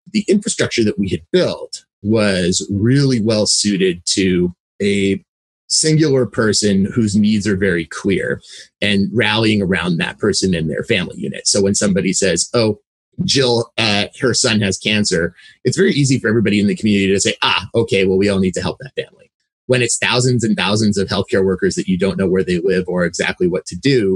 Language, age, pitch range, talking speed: English, 30-49, 100-125 Hz, 195 wpm